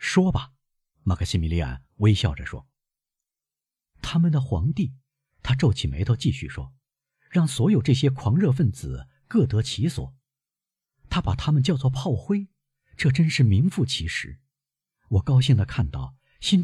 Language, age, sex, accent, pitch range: Chinese, 50-69, male, native, 100-145 Hz